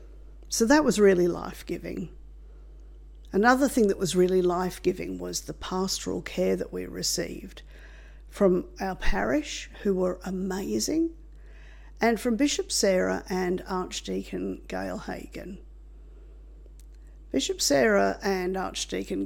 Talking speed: 110 wpm